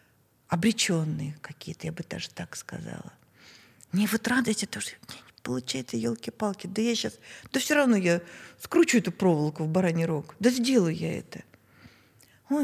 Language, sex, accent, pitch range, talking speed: Russian, female, native, 165-225 Hz, 150 wpm